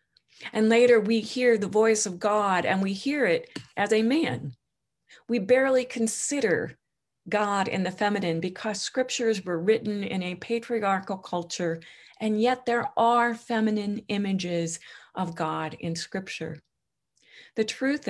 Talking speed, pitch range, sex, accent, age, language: 140 wpm, 170-225 Hz, female, American, 40-59, English